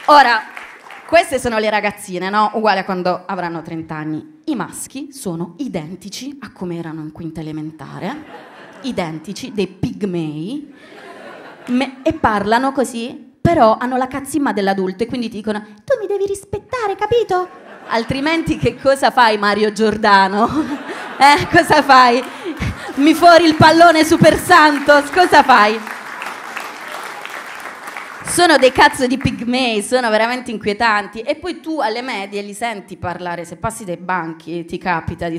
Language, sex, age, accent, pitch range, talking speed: Italian, female, 20-39, native, 175-260 Hz, 135 wpm